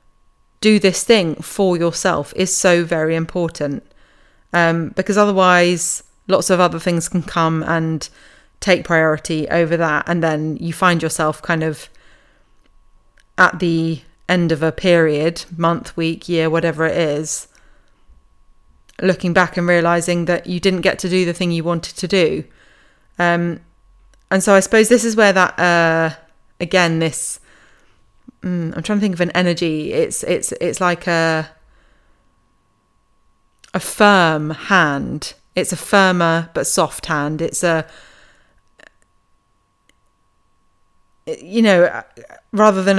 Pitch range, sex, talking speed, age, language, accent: 155-190 Hz, female, 135 wpm, 30-49, English, British